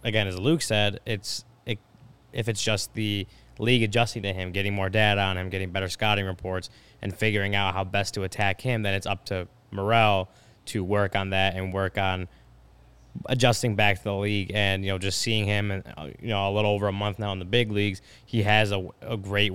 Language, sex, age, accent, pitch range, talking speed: English, male, 20-39, American, 95-115 Hz, 220 wpm